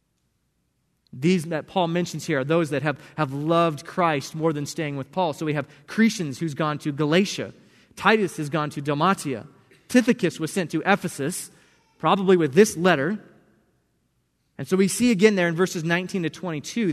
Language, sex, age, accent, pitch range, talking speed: English, male, 20-39, American, 140-185 Hz, 175 wpm